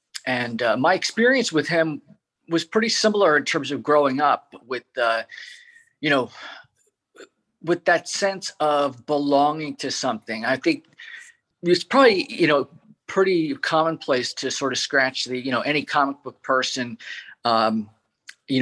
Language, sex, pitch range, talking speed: English, male, 130-170 Hz, 150 wpm